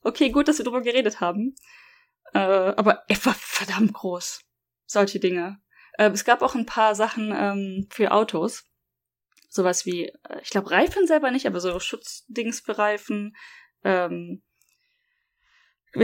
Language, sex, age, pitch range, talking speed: German, female, 10-29, 190-245 Hz, 135 wpm